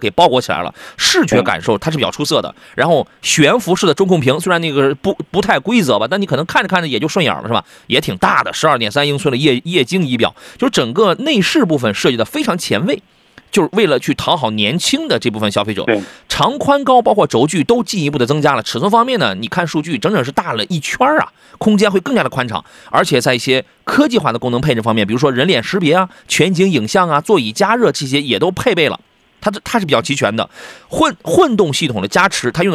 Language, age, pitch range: Chinese, 30-49, 130-195 Hz